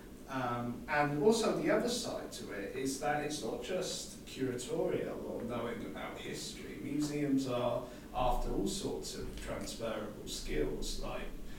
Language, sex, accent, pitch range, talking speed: English, male, British, 125-145 Hz, 140 wpm